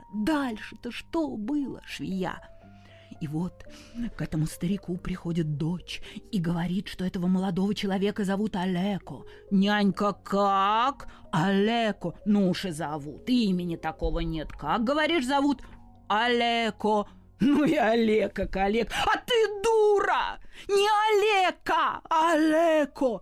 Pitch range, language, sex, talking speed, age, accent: 195-290 Hz, Russian, female, 115 wpm, 20-39, native